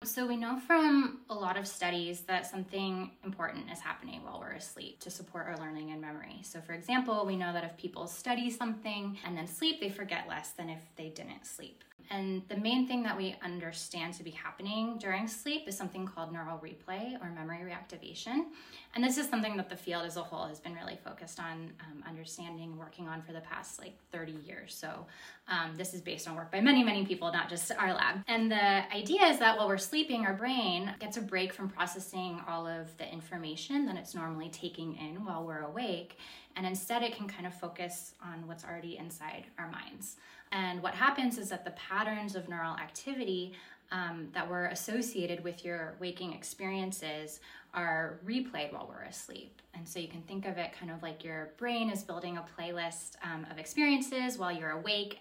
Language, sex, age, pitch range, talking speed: English, female, 10-29, 170-215 Hz, 205 wpm